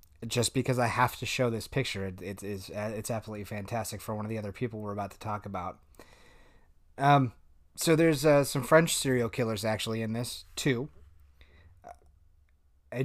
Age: 30-49